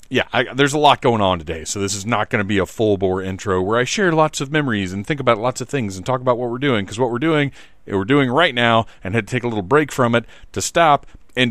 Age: 40-59